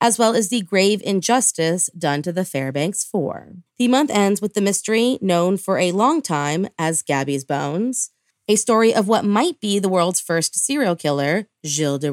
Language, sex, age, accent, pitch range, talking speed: English, female, 30-49, American, 165-225 Hz, 185 wpm